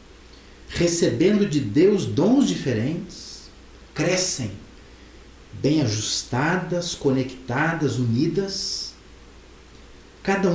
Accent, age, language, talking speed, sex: Brazilian, 50-69, Portuguese, 65 wpm, male